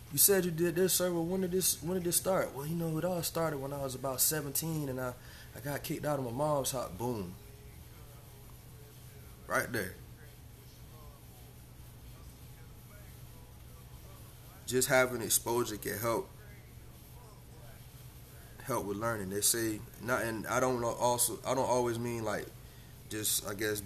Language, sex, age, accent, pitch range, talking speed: English, male, 20-39, American, 105-130 Hz, 155 wpm